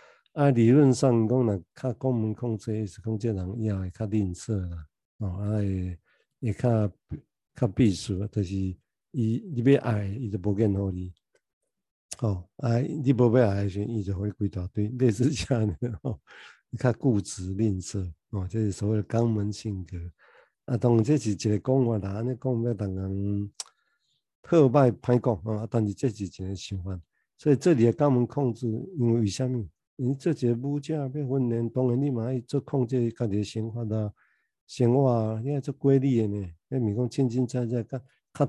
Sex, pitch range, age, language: male, 105-130 Hz, 50-69, Chinese